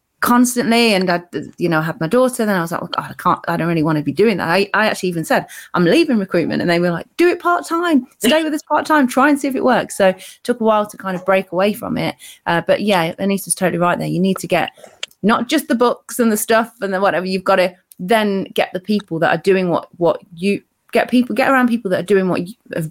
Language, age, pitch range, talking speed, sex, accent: English, 30-49, 175-230 Hz, 280 wpm, female, British